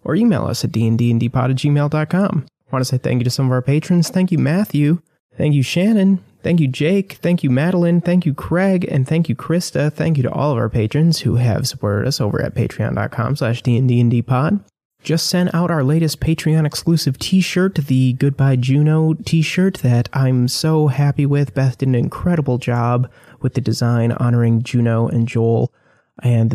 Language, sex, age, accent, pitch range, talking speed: English, male, 30-49, American, 120-155 Hz, 185 wpm